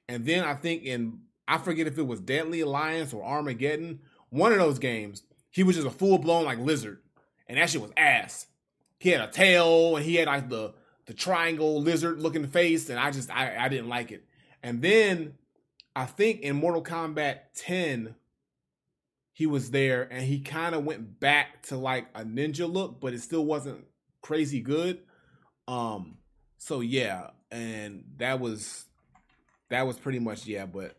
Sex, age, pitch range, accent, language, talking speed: male, 30-49, 120-160 Hz, American, English, 180 wpm